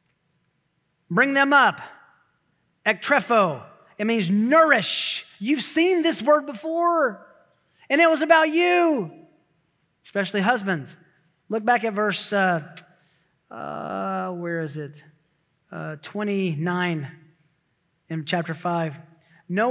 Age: 30-49